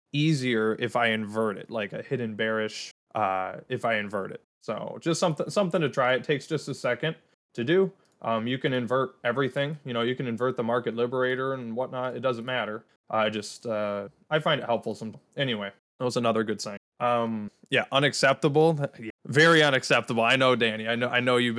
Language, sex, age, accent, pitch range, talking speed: English, male, 20-39, American, 110-145 Hz, 200 wpm